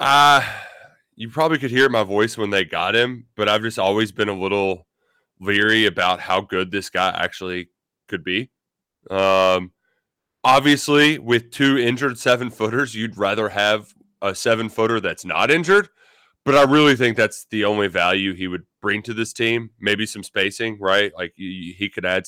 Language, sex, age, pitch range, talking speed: English, male, 20-39, 100-130 Hz, 175 wpm